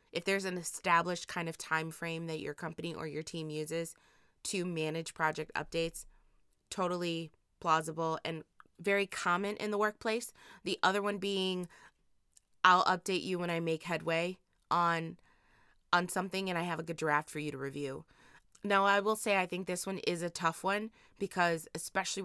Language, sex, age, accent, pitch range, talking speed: English, female, 20-39, American, 155-185 Hz, 175 wpm